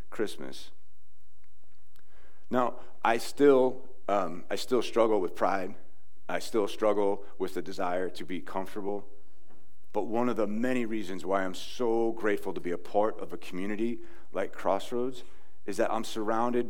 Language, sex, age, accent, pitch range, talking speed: English, male, 40-59, American, 90-110 Hz, 150 wpm